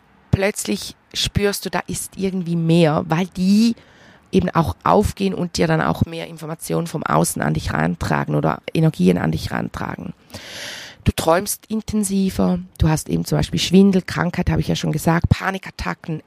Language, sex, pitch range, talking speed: German, female, 145-180 Hz, 160 wpm